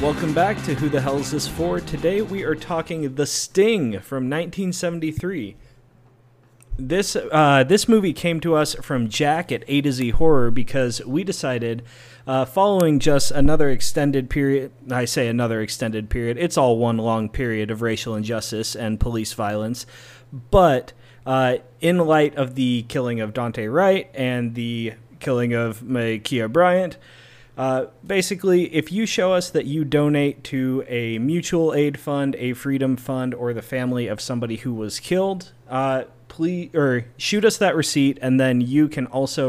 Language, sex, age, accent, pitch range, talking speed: English, male, 30-49, American, 120-160 Hz, 165 wpm